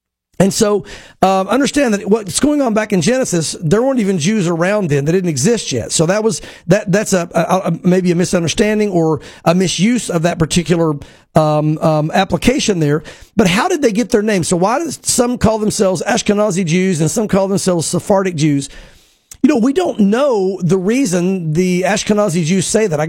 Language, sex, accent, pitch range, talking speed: English, male, American, 175-220 Hz, 200 wpm